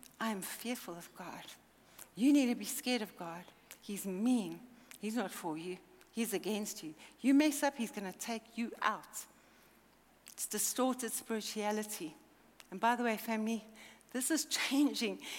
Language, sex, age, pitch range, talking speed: English, female, 60-79, 225-275 Hz, 155 wpm